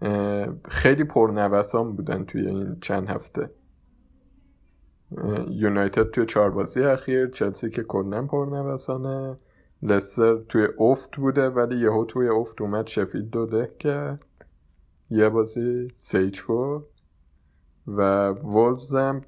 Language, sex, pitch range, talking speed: Persian, male, 100-130 Hz, 105 wpm